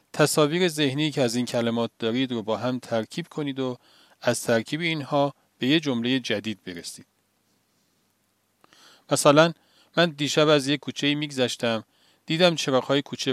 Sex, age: male, 40-59